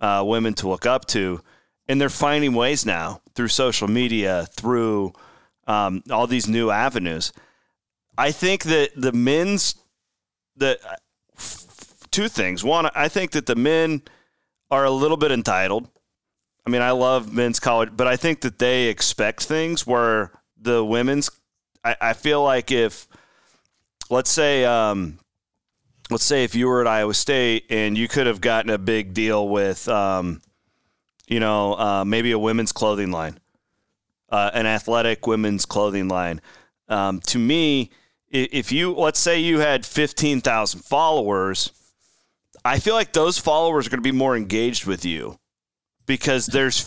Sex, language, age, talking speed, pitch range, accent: male, English, 30-49, 155 wpm, 105-135 Hz, American